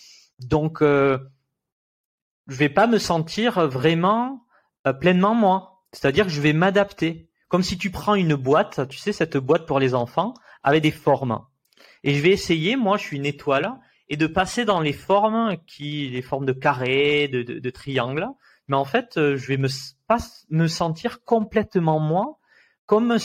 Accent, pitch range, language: French, 135-195 Hz, French